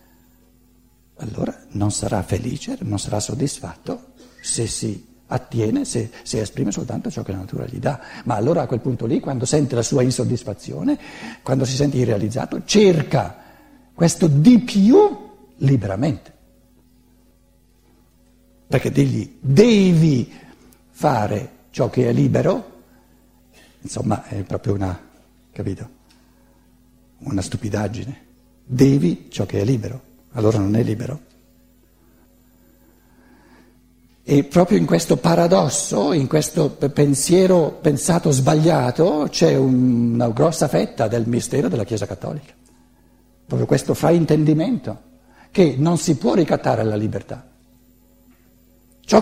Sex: male